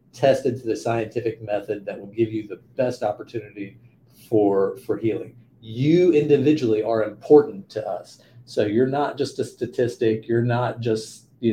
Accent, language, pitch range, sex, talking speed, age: American, English, 110-130 Hz, male, 160 wpm, 40-59